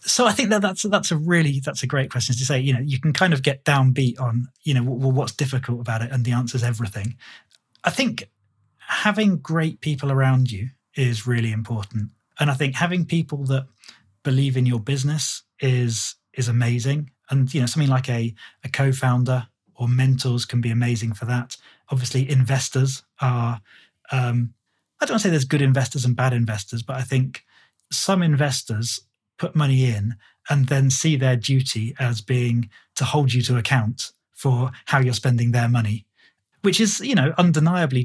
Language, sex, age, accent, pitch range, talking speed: English, male, 20-39, British, 120-145 Hz, 190 wpm